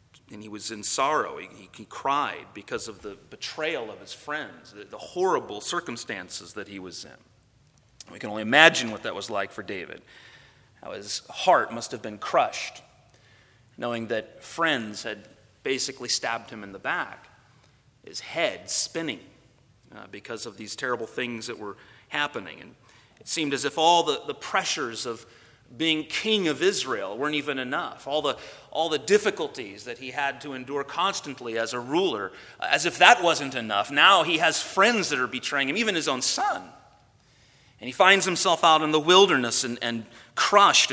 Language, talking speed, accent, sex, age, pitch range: English, 175 wpm, American, male, 30-49, 115-160 Hz